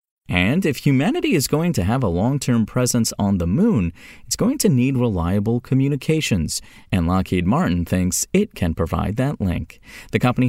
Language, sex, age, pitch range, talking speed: English, male, 30-49, 90-125 Hz, 170 wpm